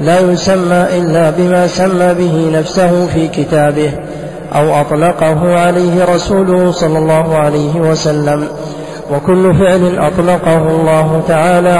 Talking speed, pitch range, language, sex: 110 wpm, 160-180 Hz, Arabic, male